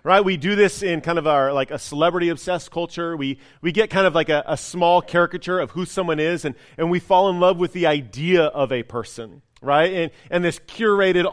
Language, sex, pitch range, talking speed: English, male, 150-195 Hz, 230 wpm